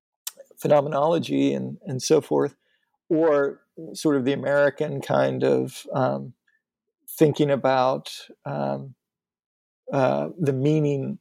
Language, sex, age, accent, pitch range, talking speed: English, male, 40-59, American, 130-160 Hz, 100 wpm